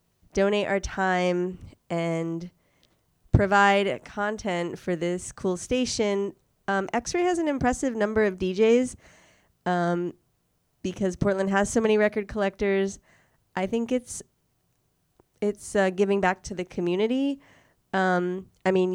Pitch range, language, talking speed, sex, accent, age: 175-205 Hz, English, 125 wpm, female, American, 20-39